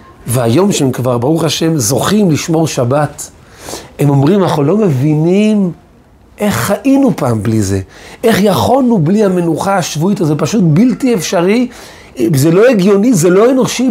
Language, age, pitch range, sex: Hebrew, 40-59, 145-195 Hz, male